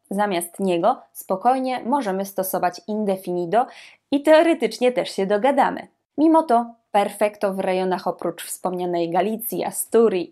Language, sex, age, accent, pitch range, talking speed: Polish, female, 20-39, native, 185-245 Hz, 115 wpm